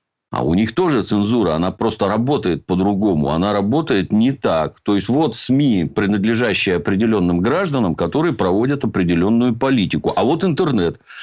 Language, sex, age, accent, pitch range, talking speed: Russian, male, 50-69, native, 95-125 Hz, 145 wpm